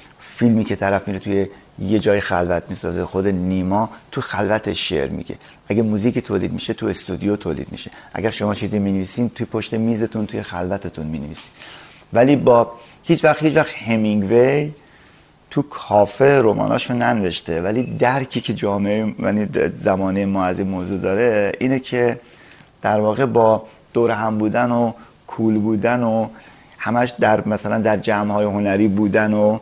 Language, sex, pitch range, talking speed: Persian, male, 100-120 Hz, 150 wpm